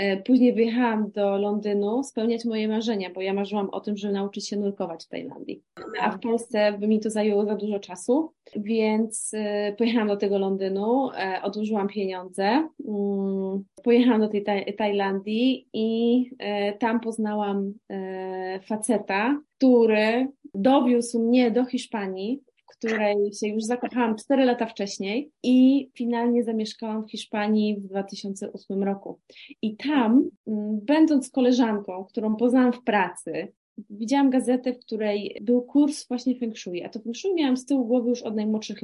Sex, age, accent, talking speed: female, 30-49, native, 140 wpm